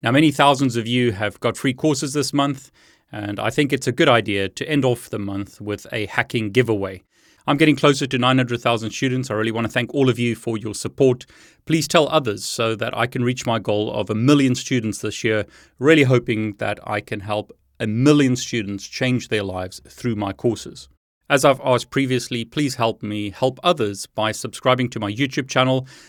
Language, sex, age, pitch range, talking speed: English, male, 30-49, 105-130 Hz, 205 wpm